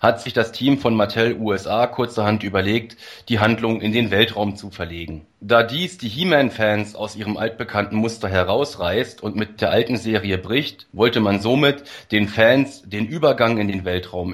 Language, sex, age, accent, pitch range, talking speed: German, male, 30-49, German, 100-120 Hz, 170 wpm